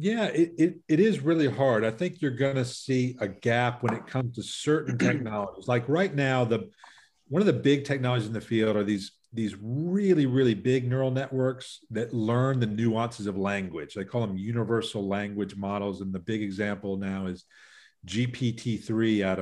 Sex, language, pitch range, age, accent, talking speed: male, English, 105-135 Hz, 40-59, American, 190 wpm